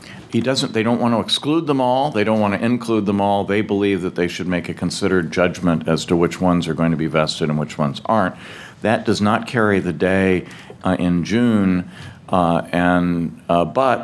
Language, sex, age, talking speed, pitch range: English, male, 50-69, 220 wpm, 90-105 Hz